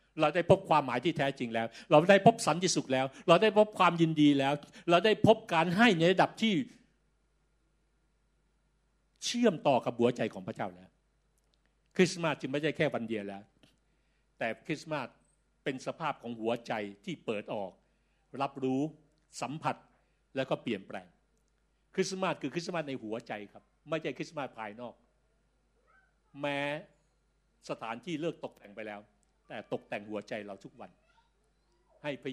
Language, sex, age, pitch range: Thai, male, 60-79, 115-165 Hz